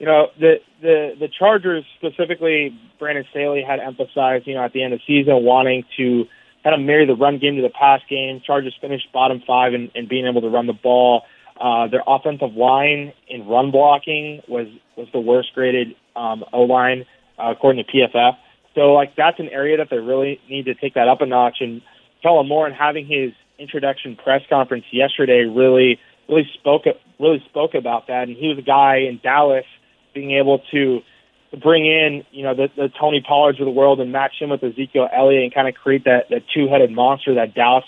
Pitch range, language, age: 125-145 Hz, English, 20-39